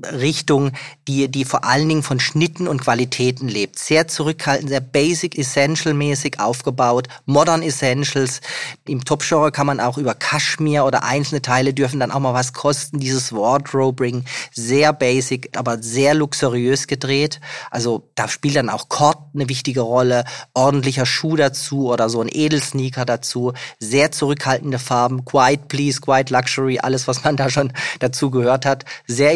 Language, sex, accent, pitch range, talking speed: German, male, German, 125-150 Hz, 155 wpm